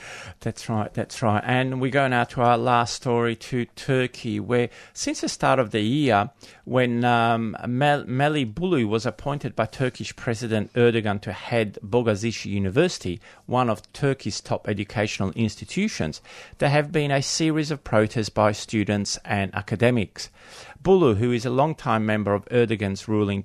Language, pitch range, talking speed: English, 105-130 Hz, 155 wpm